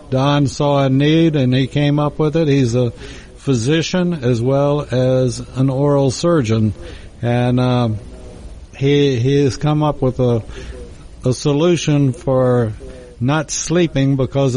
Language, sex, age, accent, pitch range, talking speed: English, male, 60-79, American, 125-150 Hz, 140 wpm